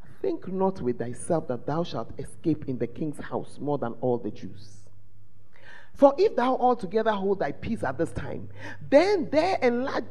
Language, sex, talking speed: English, male, 180 wpm